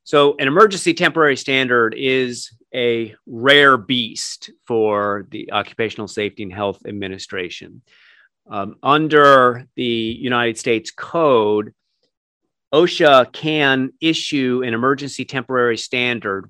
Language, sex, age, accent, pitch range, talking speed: English, male, 40-59, American, 110-130 Hz, 105 wpm